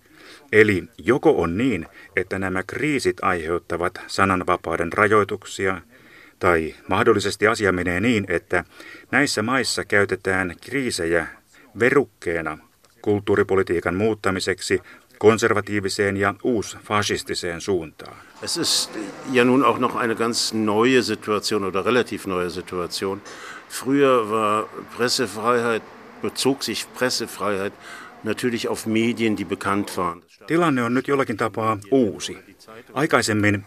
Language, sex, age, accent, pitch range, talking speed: Finnish, male, 50-69, native, 95-115 Hz, 105 wpm